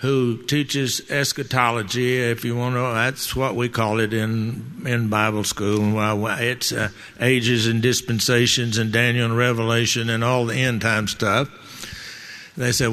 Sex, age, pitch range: male, 60-79, 115-130 Hz